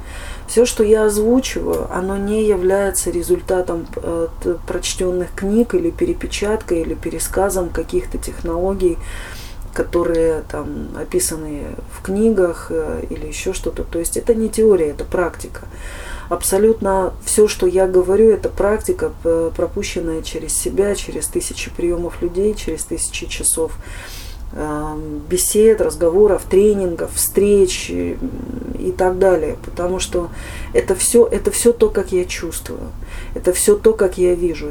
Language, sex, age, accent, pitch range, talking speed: Russian, female, 30-49, native, 155-195 Hz, 120 wpm